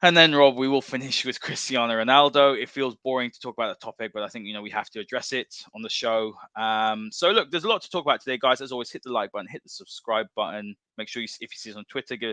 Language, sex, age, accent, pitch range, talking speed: English, male, 20-39, British, 110-140 Hz, 295 wpm